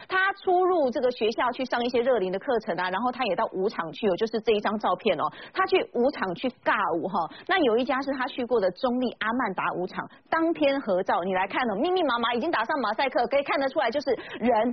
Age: 30-49